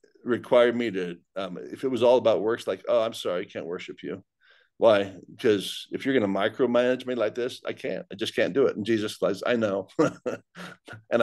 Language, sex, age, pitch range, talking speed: English, male, 50-69, 110-150 Hz, 220 wpm